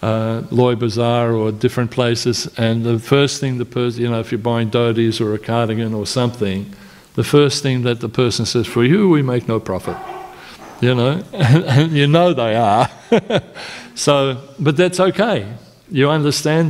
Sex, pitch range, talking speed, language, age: male, 115-135 Hz, 175 wpm, English, 50-69